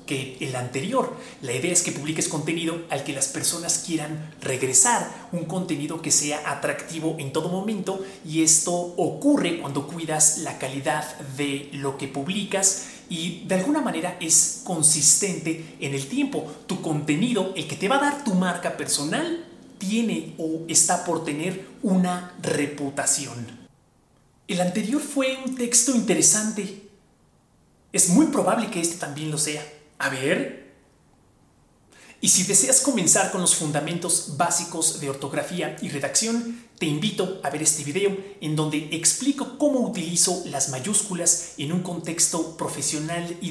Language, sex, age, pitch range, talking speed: Spanish, male, 30-49, 150-195 Hz, 150 wpm